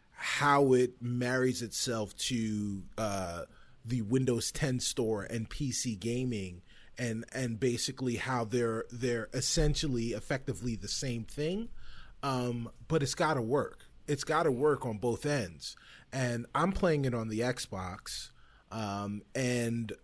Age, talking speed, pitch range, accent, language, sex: 30-49, 140 wpm, 115-150 Hz, American, English, male